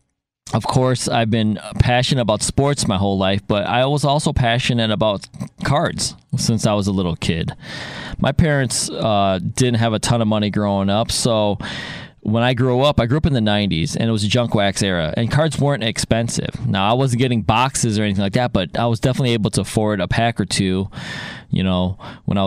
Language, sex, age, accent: English, male, 20-39, American